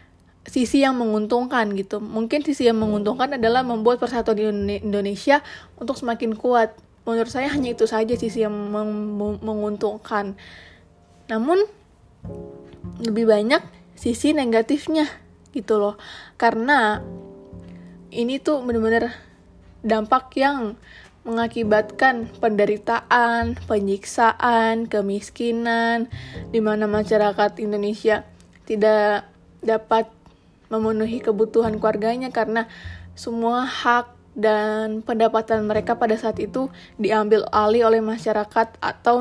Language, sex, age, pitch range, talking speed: Indonesian, female, 20-39, 210-240 Hz, 100 wpm